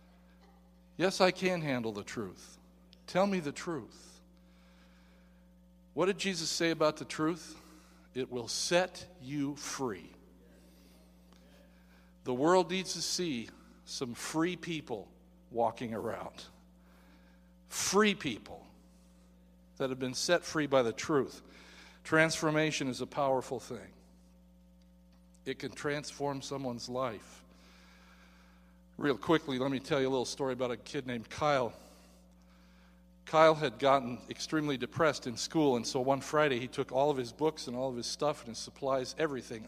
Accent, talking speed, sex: American, 140 wpm, male